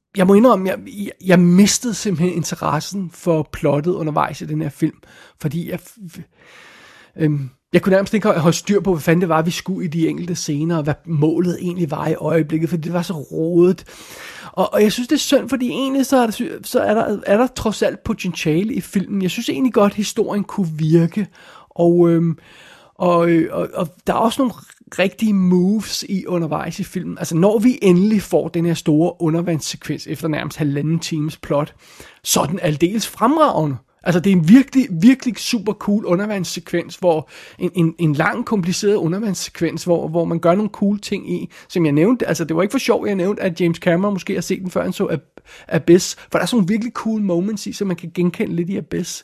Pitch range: 165-205 Hz